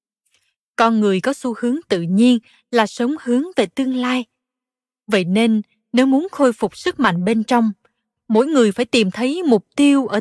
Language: Vietnamese